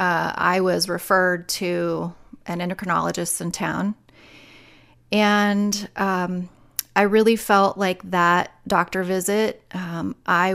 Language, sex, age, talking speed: English, female, 30-49, 115 wpm